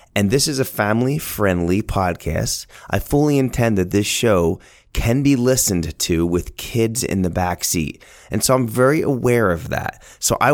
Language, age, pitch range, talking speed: English, 30-49, 90-125 Hz, 175 wpm